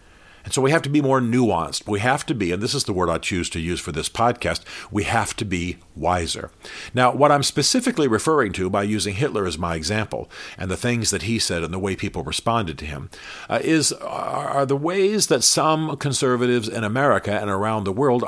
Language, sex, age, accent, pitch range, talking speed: English, male, 50-69, American, 95-125 Hz, 225 wpm